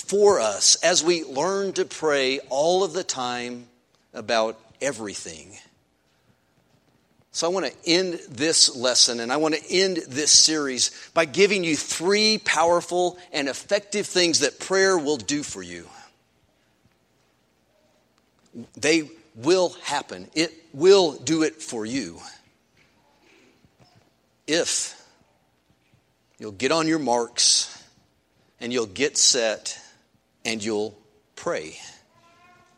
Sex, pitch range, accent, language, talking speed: male, 115-170 Hz, American, English, 115 wpm